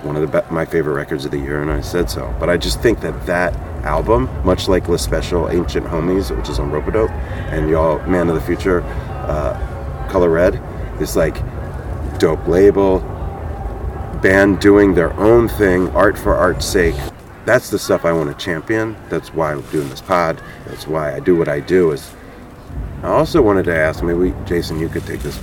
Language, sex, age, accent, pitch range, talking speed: English, male, 30-49, American, 80-95 Hz, 205 wpm